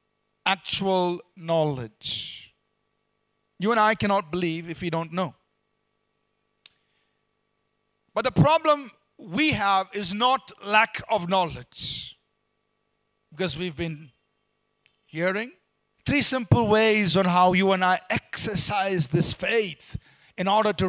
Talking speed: 110 wpm